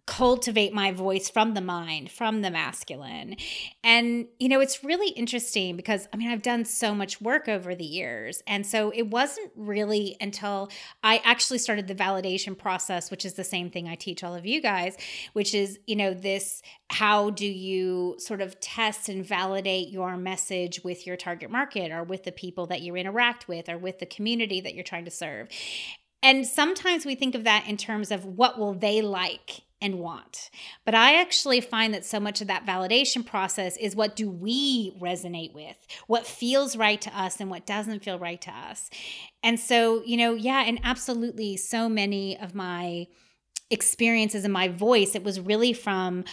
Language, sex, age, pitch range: English, female, 30-49, 185-230 Hz